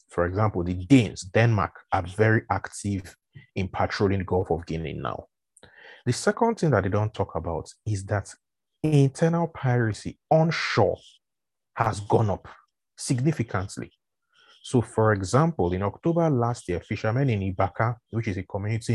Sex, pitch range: male, 100-140 Hz